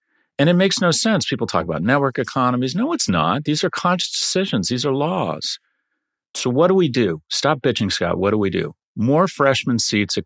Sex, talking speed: male, 210 wpm